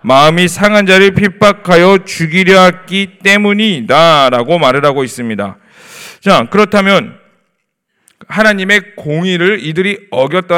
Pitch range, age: 170-220 Hz, 40-59